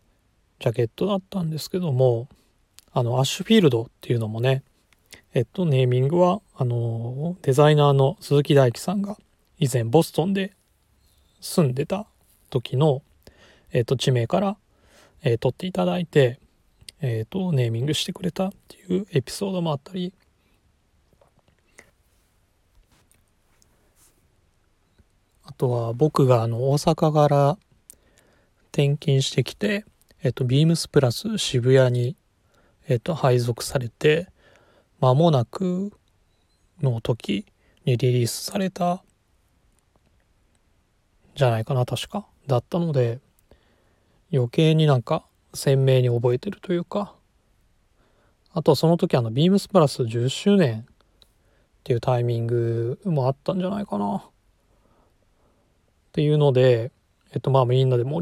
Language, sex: Japanese, male